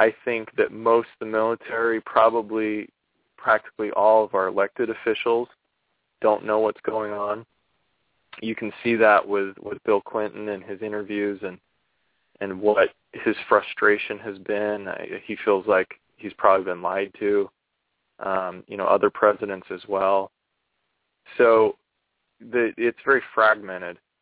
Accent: American